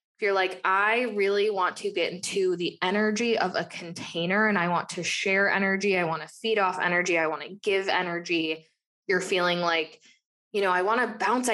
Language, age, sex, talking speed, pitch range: English, 20-39, female, 205 wpm, 185-260 Hz